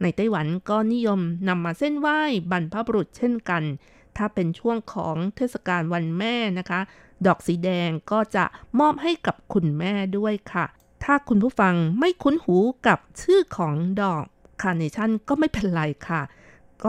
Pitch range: 175-230 Hz